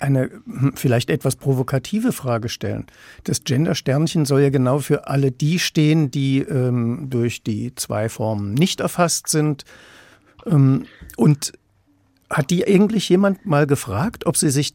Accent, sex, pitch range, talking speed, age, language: German, male, 125-175 Hz, 140 wpm, 60-79, German